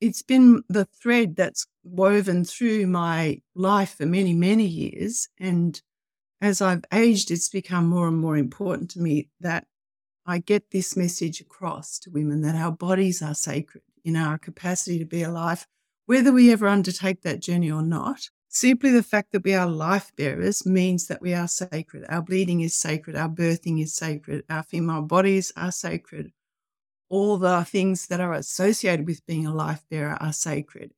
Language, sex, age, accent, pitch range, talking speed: English, female, 60-79, Australian, 165-200 Hz, 175 wpm